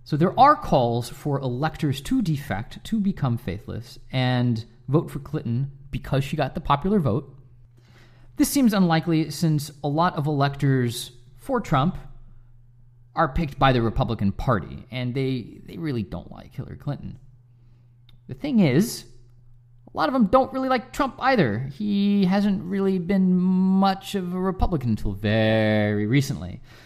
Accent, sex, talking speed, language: American, male, 150 wpm, English